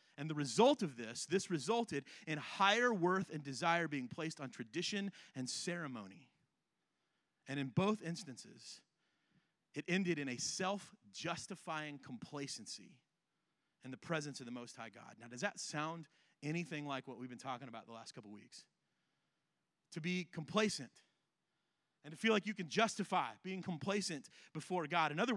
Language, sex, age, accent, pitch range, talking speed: English, male, 30-49, American, 140-185 Hz, 160 wpm